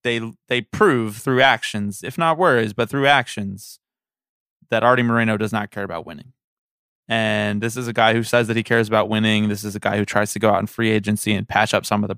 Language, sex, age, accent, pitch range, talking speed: English, male, 20-39, American, 105-130 Hz, 240 wpm